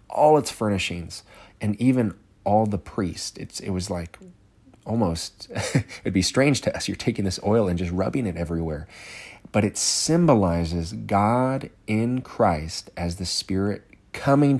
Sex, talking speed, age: male, 150 wpm, 30-49